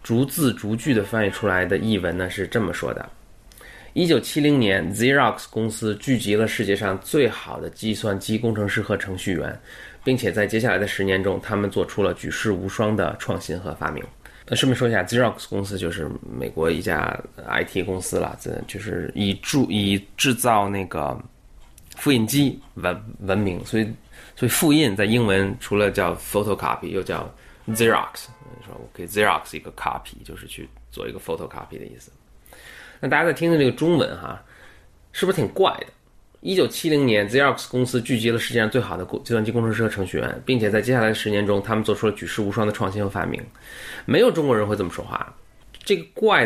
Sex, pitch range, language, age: male, 95-120 Hz, Chinese, 20-39